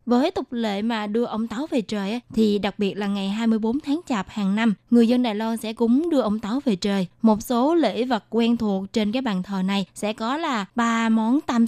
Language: Vietnamese